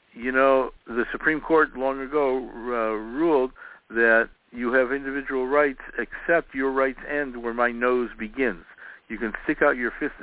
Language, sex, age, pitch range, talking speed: English, male, 60-79, 110-130 Hz, 165 wpm